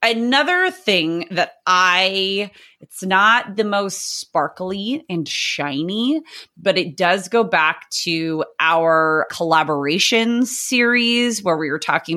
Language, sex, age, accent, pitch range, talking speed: English, female, 30-49, American, 160-215 Hz, 120 wpm